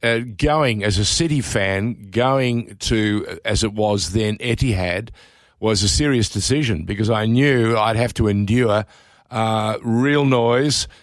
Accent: Australian